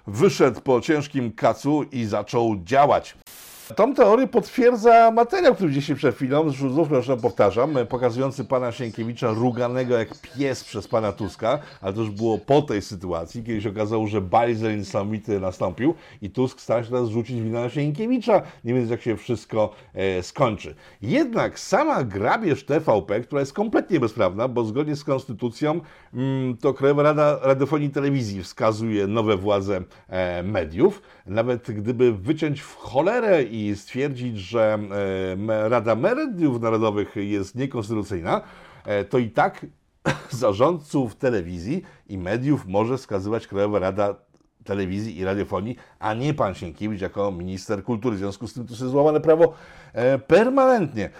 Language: Polish